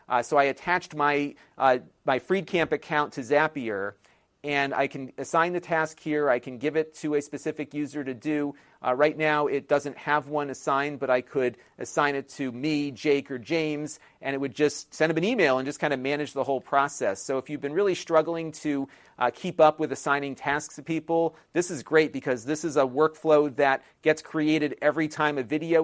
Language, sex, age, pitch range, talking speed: English, male, 40-59, 135-160 Hz, 215 wpm